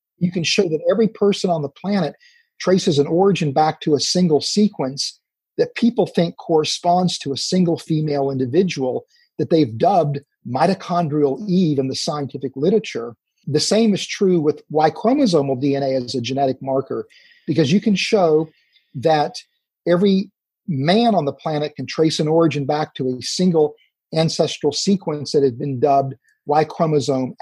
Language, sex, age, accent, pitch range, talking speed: English, male, 40-59, American, 145-200 Hz, 155 wpm